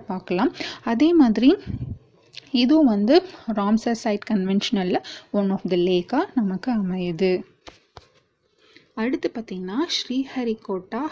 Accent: native